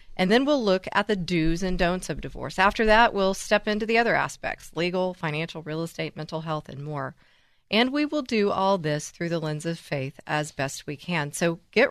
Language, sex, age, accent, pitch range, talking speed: English, female, 40-59, American, 155-205 Hz, 220 wpm